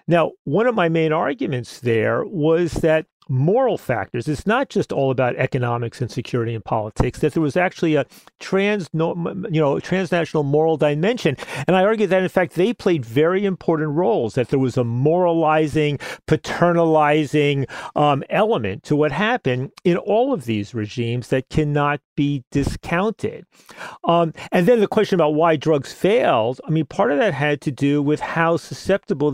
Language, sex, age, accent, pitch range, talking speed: English, male, 40-59, American, 135-175 Hz, 170 wpm